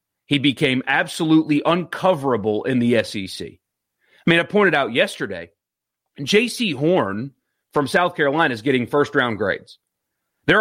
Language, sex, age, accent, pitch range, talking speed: English, male, 30-49, American, 115-165 Hz, 135 wpm